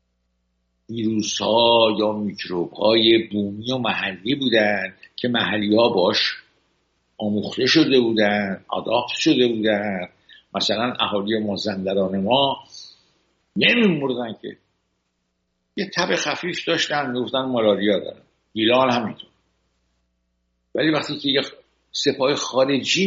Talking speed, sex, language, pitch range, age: 105 wpm, male, English, 95-145 Hz, 60-79